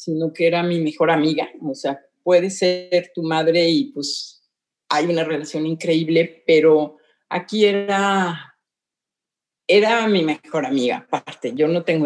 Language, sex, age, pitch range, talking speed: Spanish, female, 50-69, 160-200 Hz, 145 wpm